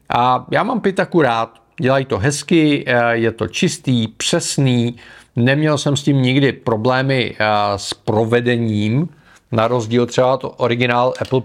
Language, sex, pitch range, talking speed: Czech, male, 115-140 Hz, 135 wpm